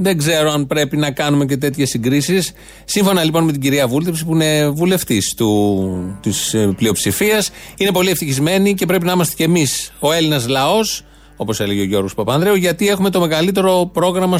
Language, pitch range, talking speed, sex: Greek, 130-175 Hz, 180 wpm, male